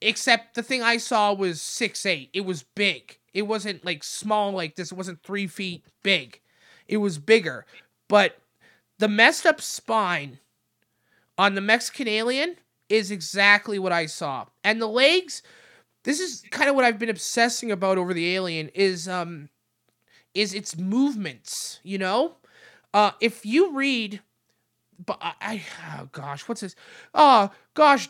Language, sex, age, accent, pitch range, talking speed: English, male, 30-49, American, 185-240 Hz, 155 wpm